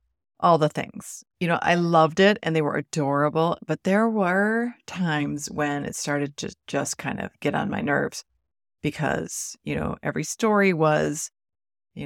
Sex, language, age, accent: female, English, 30-49, American